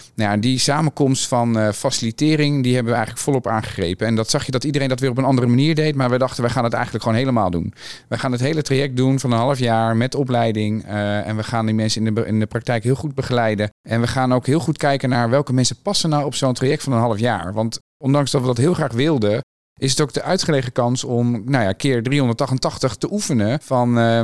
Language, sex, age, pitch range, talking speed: Dutch, male, 40-59, 115-135 Hz, 255 wpm